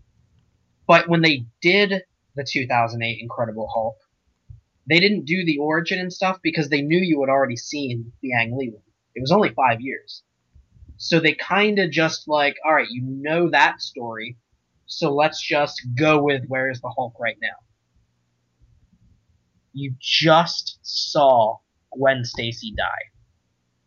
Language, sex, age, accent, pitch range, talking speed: English, male, 20-39, American, 110-155 Hz, 150 wpm